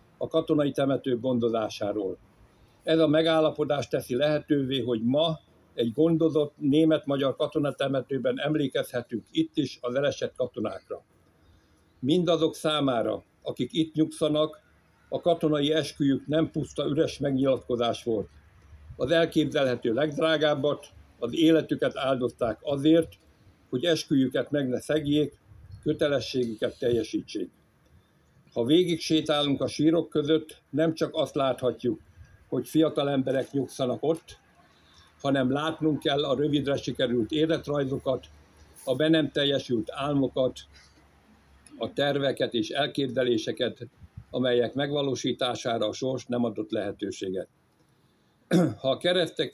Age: 60-79